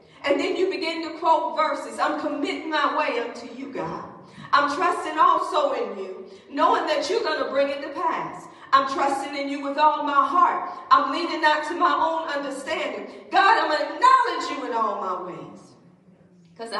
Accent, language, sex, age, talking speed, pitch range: American, English, female, 40-59, 195 wpm, 260-320 Hz